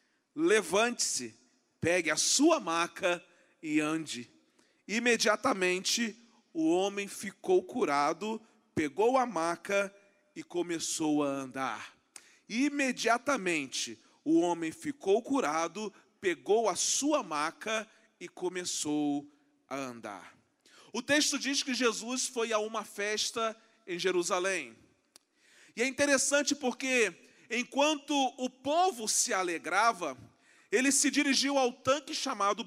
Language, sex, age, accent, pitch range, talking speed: Portuguese, male, 40-59, Brazilian, 200-285 Hz, 105 wpm